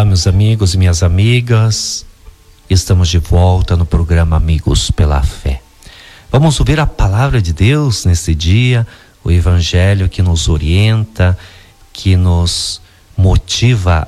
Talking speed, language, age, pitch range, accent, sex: 130 wpm, Portuguese, 50-69, 90-115 Hz, Brazilian, male